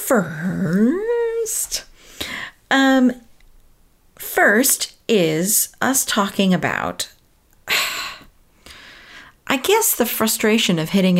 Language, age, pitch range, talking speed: English, 40-59, 175-250 Hz, 70 wpm